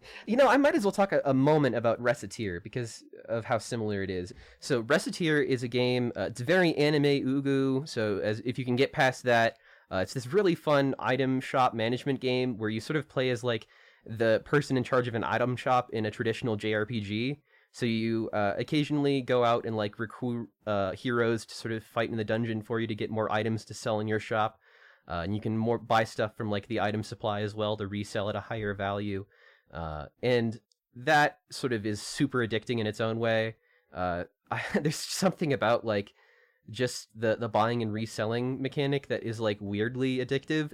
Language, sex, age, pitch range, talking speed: English, male, 20-39, 110-130 Hz, 210 wpm